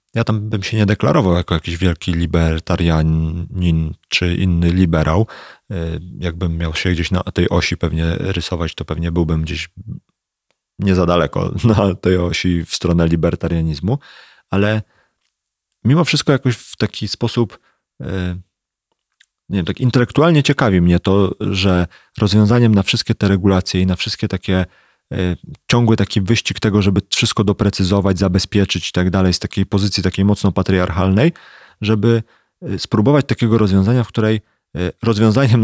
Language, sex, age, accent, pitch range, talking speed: Polish, male, 30-49, native, 90-115 Hz, 140 wpm